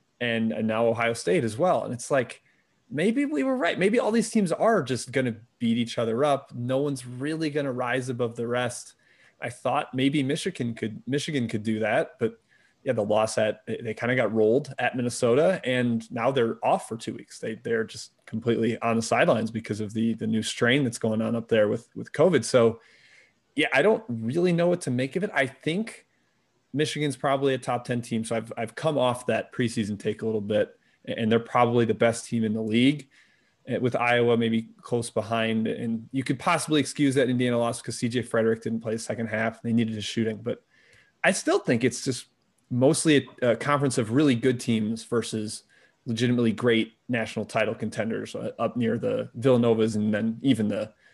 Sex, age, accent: male, 30-49, American